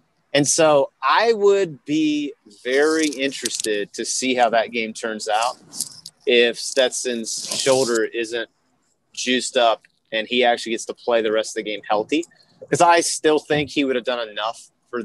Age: 30-49